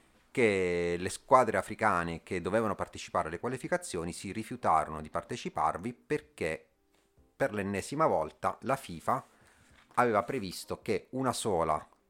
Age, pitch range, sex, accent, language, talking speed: 30-49, 85-110 Hz, male, native, Italian, 120 wpm